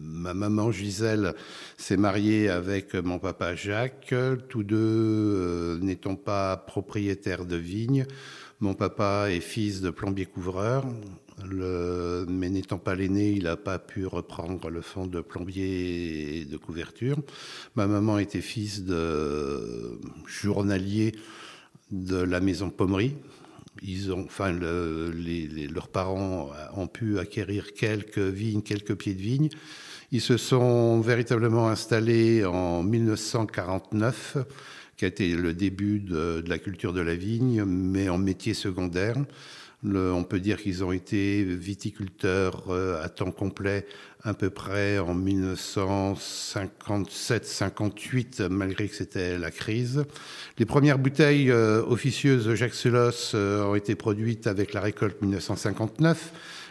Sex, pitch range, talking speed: male, 95-110 Hz, 135 wpm